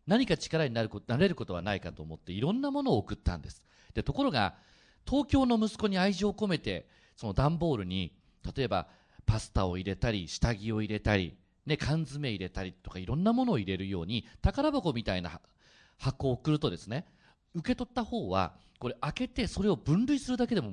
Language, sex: Japanese, male